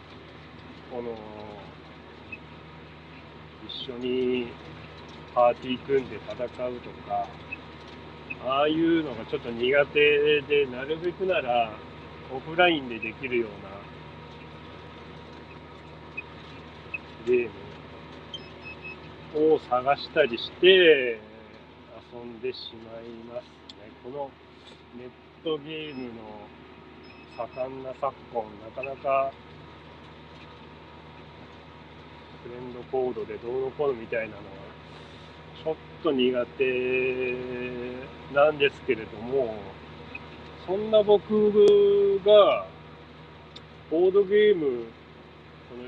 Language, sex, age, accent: Japanese, male, 40-59, native